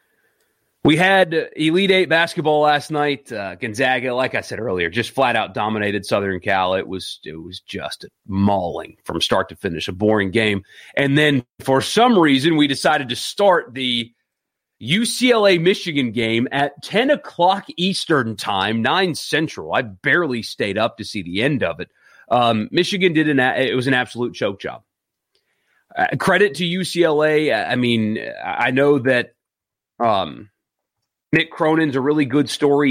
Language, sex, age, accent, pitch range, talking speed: English, male, 30-49, American, 115-150 Hz, 160 wpm